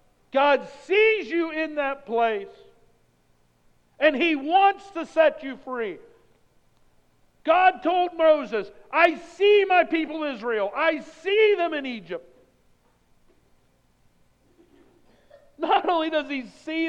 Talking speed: 110 wpm